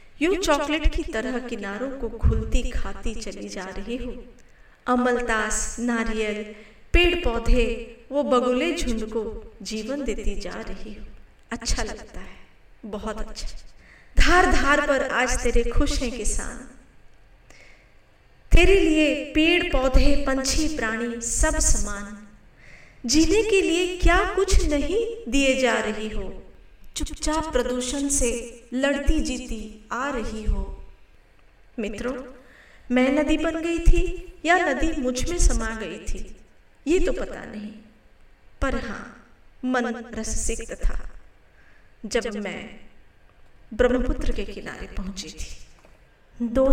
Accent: native